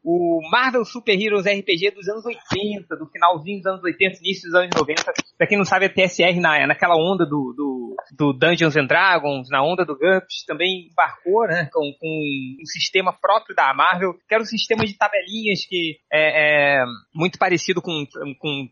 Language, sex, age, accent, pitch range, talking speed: Portuguese, male, 20-39, Brazilian, 155-215 Hz, 190 wpm